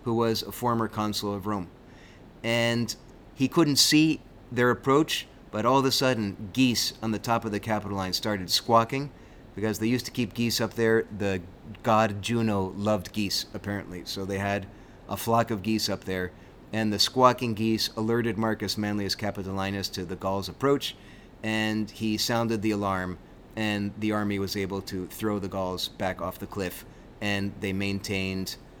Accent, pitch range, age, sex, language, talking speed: American, 100-120 Hz, 30-49, male, English, 175 wpm